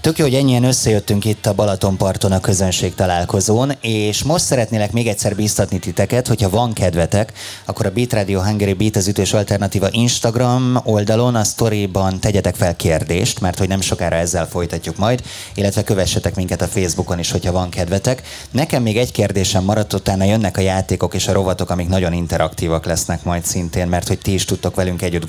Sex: male